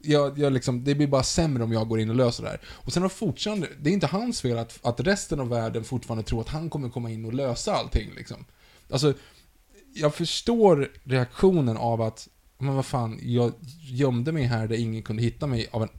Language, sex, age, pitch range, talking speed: Swedish, male, 20-39, 115-155 Hz, 230 wpm